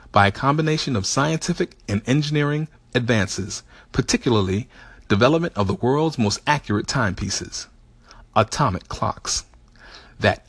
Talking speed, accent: 110 wpm, American